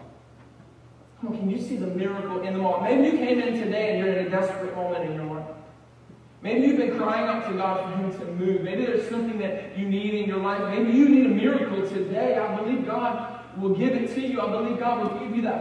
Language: English